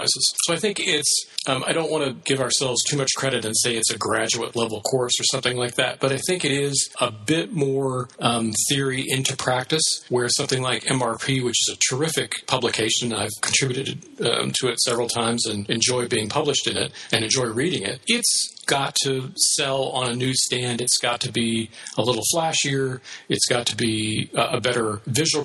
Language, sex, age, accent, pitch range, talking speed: English, male, 40-59, American, 115-135 Hz, 200 wpm